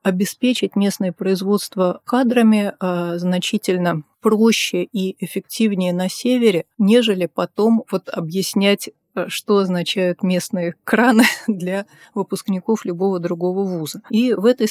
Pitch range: 175-215 Hz